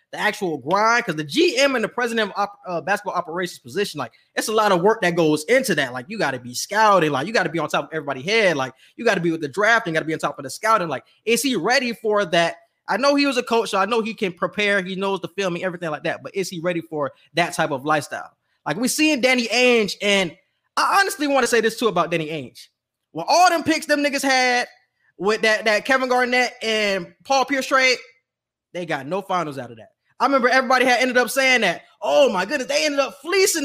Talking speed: 255 wpm